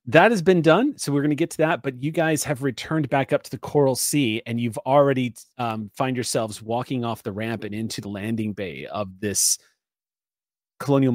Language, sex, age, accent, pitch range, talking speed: English, male, 30-49, American, 110-135 Hz, 215 wpm